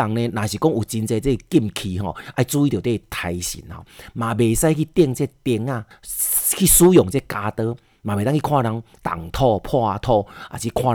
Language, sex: Chinese, male